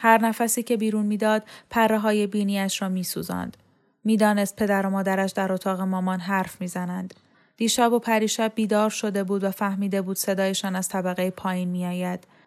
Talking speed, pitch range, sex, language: 160 wpm, 185-220 Hz, female, Persian